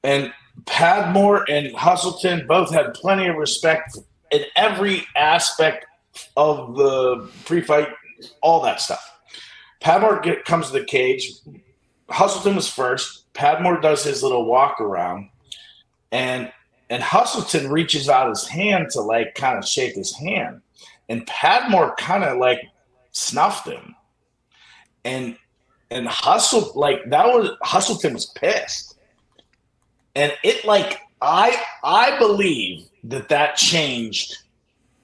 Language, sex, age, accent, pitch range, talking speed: English, male, 50-69, American, 140-210 Hz, 125 wpm